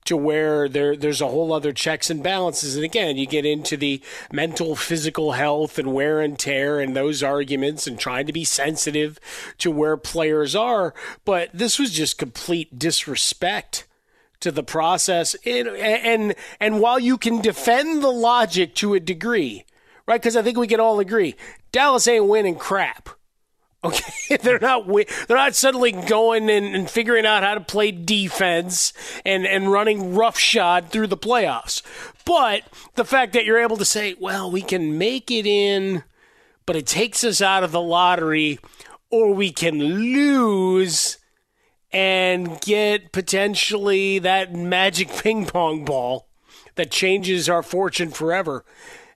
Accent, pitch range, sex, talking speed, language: American, 160-230 Hz, male, 155 wpm, English